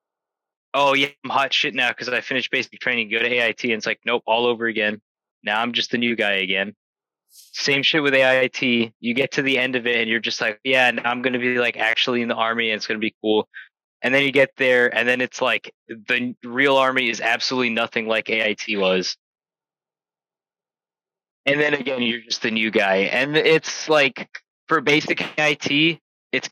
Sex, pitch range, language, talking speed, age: male, 115-140 Hz, English, 205 wpm, 20-39